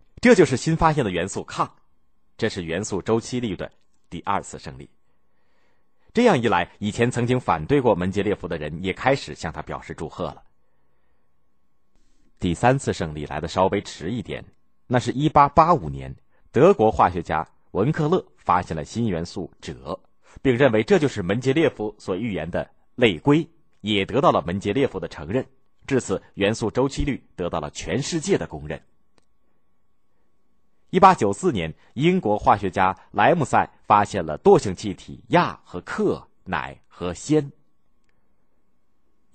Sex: male